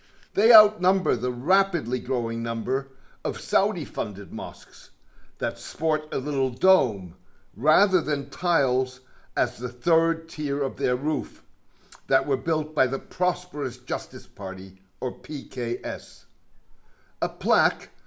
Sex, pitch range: male, 125-180 Hz